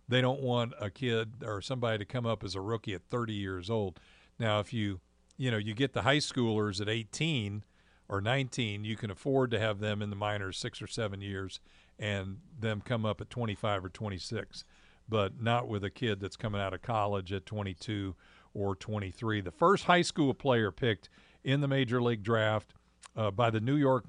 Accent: American